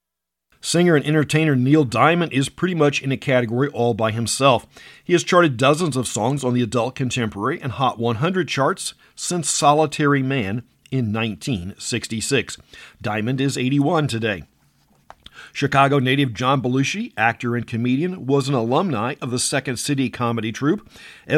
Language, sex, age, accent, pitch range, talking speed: English, male, 50-69, American, 120-150 Hz, 150 wpm